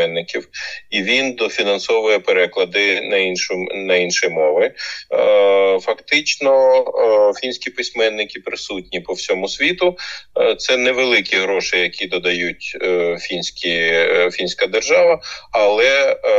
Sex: male